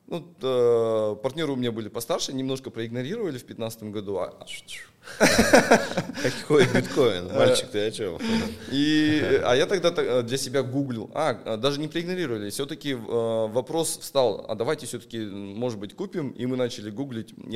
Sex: male